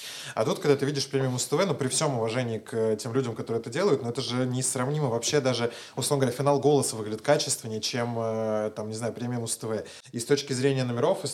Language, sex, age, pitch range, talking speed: Russian, male, 20-39, 115-135 Hz, 230 wpm